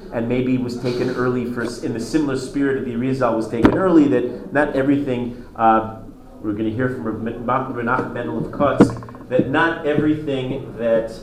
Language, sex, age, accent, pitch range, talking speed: English, male, 40-59, American, 125-155 Hz, 175 wpm